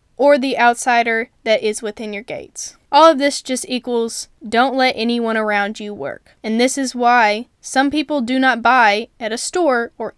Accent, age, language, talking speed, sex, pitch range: American, 10-29, English, 190 wpm, female, 220-265 Hz